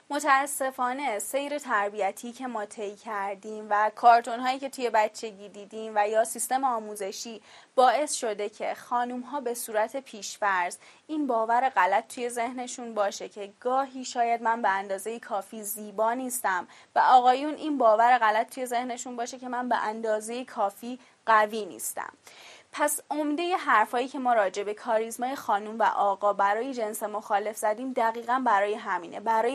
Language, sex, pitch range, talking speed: Persian, female, 210-255 Hz, 150 wpm